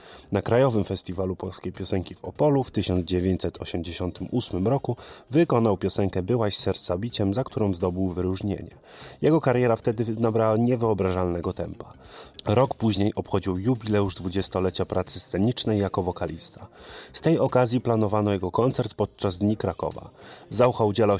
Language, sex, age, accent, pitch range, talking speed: Polish, male, 30-49, native, 95-120 Hz, 125 wpm